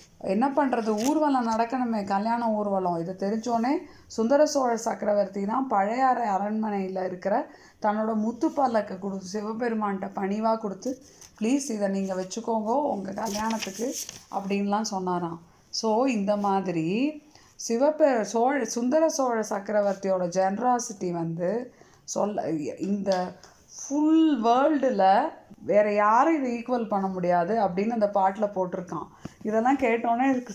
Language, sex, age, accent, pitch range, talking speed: Tamil, female, 20-39, native, 195-250 Hz, 110 wpm